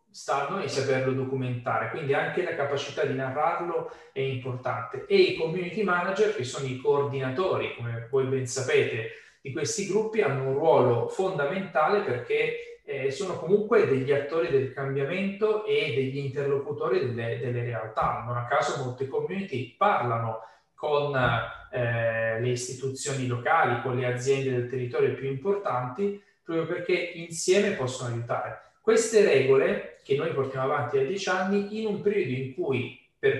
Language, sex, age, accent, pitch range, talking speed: Italian, male, 30-49, native, 130-205 Hz, 150 wpm